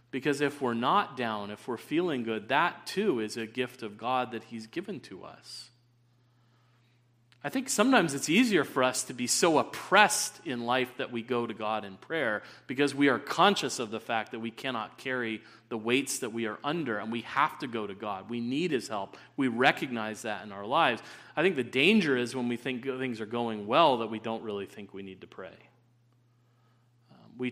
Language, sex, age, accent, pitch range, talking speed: English, male, 40-59, American, 115-130 Hz, 210 wpm